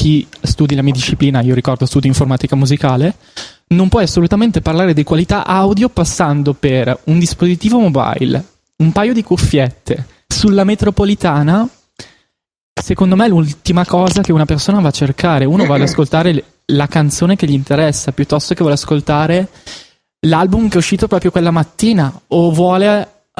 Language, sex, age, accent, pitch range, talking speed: Italian, male, 20-39, native, 140-180 Hz, 155 wpm